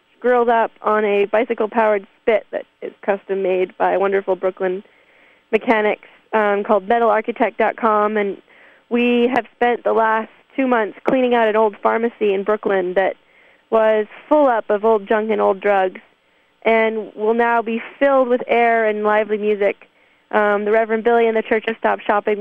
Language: English